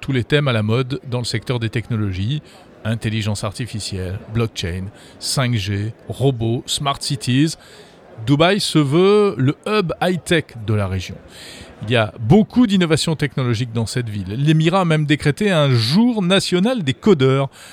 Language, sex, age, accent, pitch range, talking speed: French, male, 40-59, French, 115-160 Hz, 150 wpm